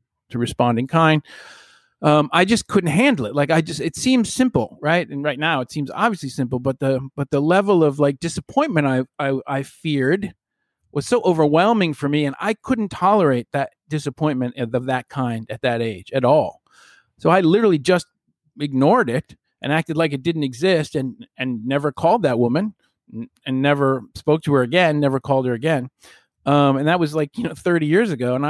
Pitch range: 135-175 Hz